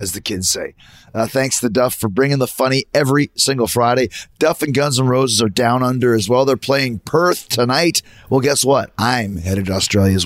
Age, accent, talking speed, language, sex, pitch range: 30-49, American, 215 wpm, English, male, 105-130 Hz